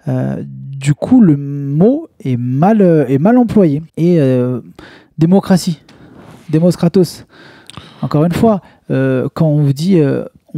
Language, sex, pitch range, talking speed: French, male, 130-185 Hz, 140 wpm